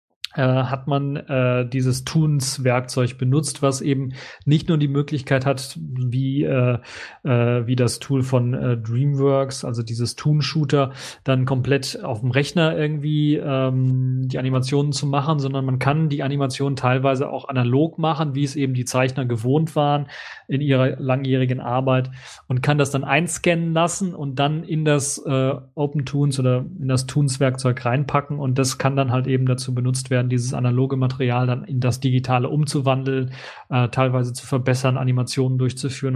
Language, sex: German, male